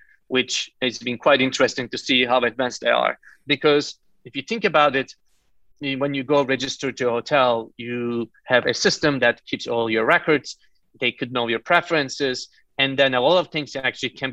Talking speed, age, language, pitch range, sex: 195 wpm, 30-49, English, 115-140 Hz, male